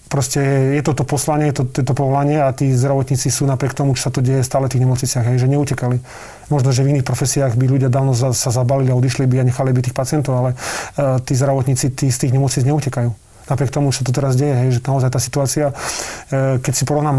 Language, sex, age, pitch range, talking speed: Slovak, male, 30-49, 130-145 Hz, 235 wpm